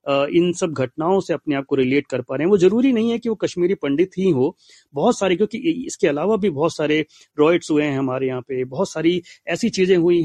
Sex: male